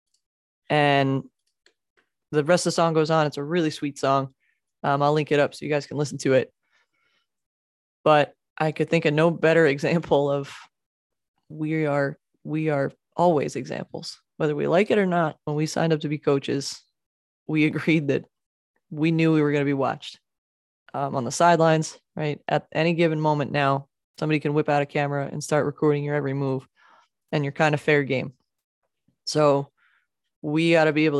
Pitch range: 140-160 Hz